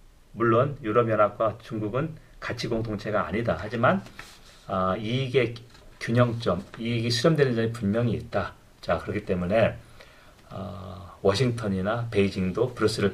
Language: Korean